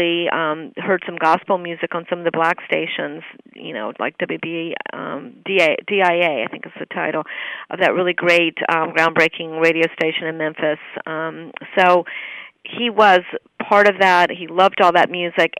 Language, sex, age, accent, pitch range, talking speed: English, female, 40-59, American, 170-195 Hz, 170 wpm